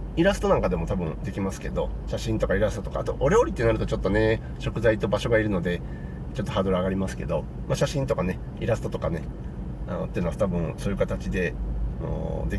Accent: native